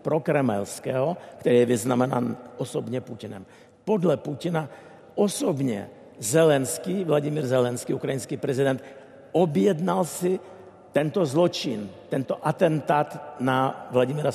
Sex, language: male, Czech